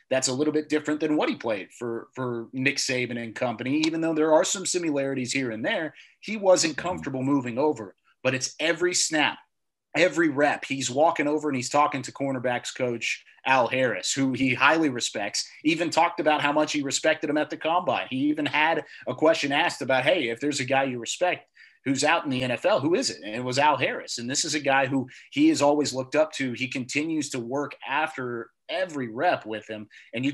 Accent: American